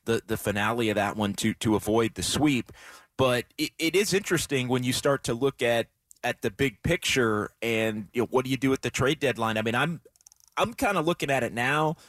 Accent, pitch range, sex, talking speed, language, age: American, 115-145 Hz, male, 235 wpm, English, 30-49